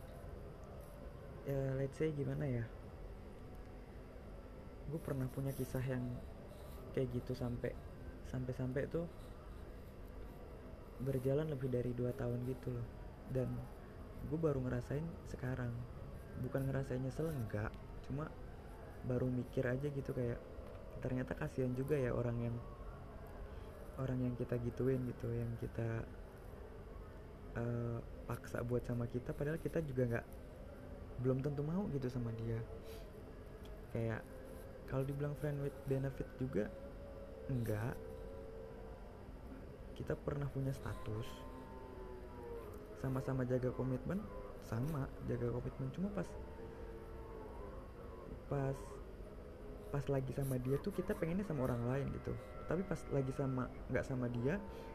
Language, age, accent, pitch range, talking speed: Indonesian, 20-39, native, 110-135 Hz, 115 wpm